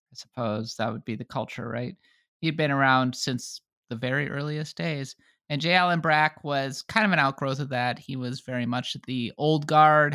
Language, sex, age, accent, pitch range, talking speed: English, male, 30-49, American, 130-170 Hz, 200 wpm